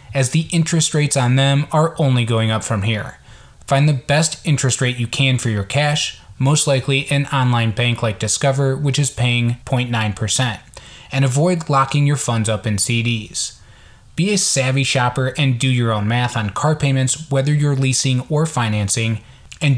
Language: English